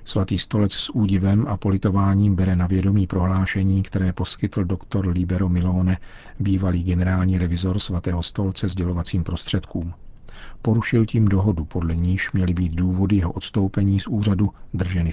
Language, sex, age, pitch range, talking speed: Czech, male, 50-69, 90-105 Hz, 145 wpm